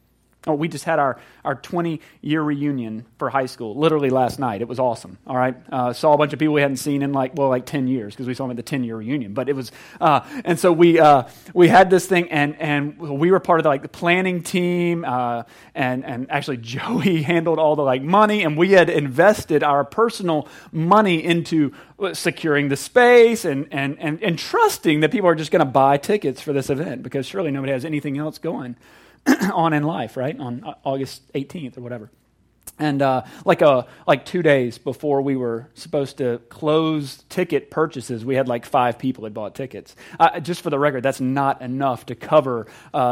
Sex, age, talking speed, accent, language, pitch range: male, 30-49, 215 wpm, American, English, 130-165 Hz